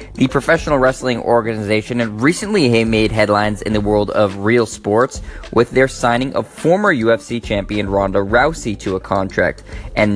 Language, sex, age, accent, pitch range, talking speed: English, male, 20-39, American, 105-120 Hz, 160 wpm